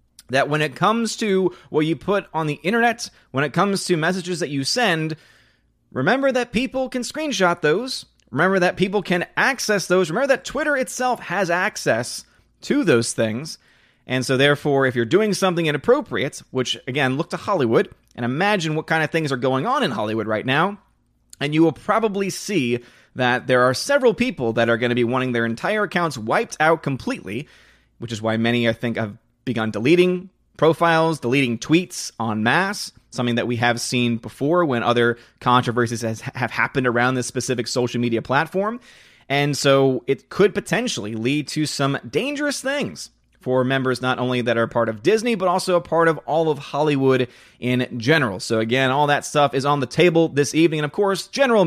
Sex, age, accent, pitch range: male, 30-49, American, 125-180 Hz